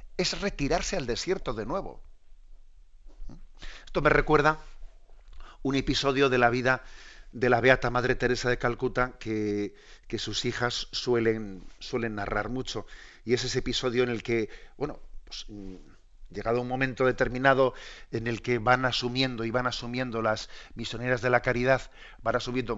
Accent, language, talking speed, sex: Spanish, Spanish, 150 wpm, male